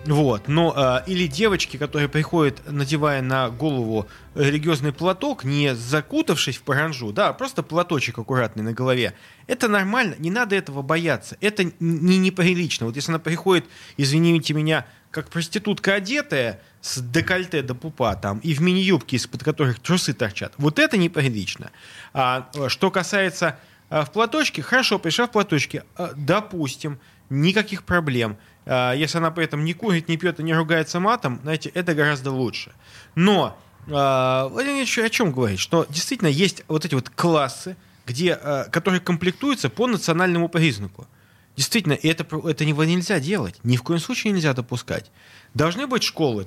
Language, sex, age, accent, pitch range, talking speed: Russian, male, 20-39, native, 130-180 Hz, 145 wpm